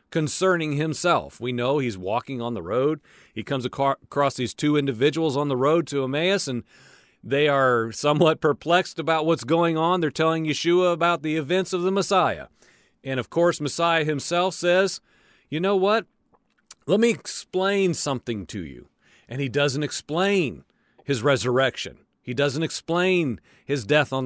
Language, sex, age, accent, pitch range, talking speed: English, male, 40-59, American, 135-180 Hz, 160 wpm